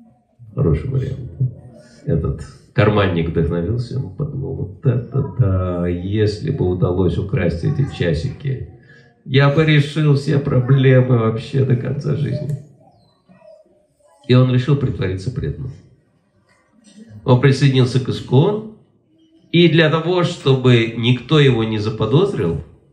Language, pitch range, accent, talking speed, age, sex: Russian, 110-145 Hz, native, 115 wpm, 50-69, male